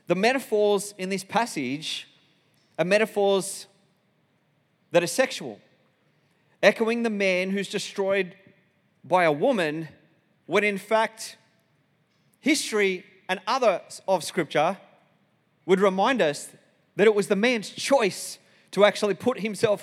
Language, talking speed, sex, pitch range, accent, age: English, 120 wpm, male, 160-200 Hz, Australian, 30-49